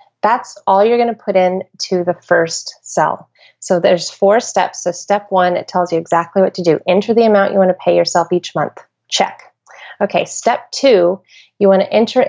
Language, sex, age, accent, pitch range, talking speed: English, female, 30-49, American, 185-230 Hz, 210 wpm